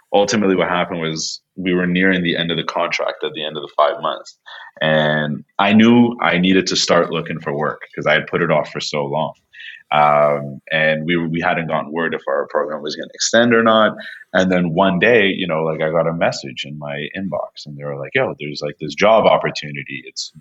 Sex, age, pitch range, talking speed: male, 30-49, 75-95 Hz, 230 wpm